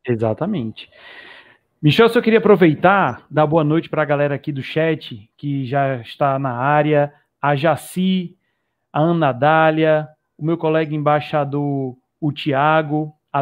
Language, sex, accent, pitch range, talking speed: Portuguese, male, Brazilian, 145-175 Hz, 145 wpm